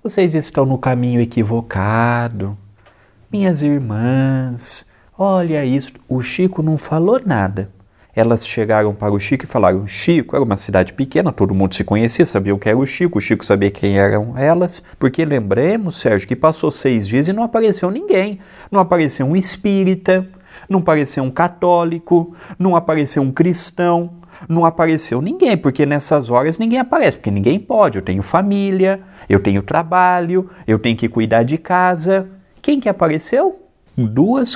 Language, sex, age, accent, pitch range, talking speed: Portuguese, male, 30-49, Brazilian, 120-190 Hz, 160 wpm